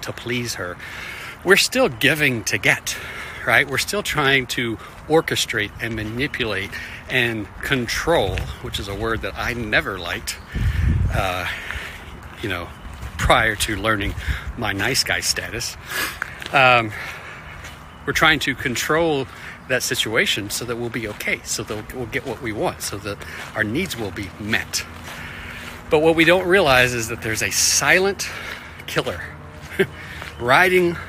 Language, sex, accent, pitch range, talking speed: English, male, American, 95-130 Hz, 145 wpm